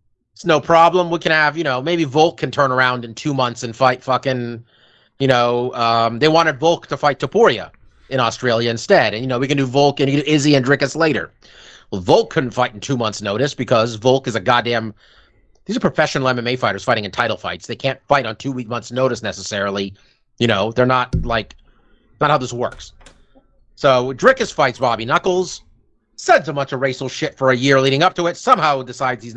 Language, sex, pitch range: English, male, 120-150 Hz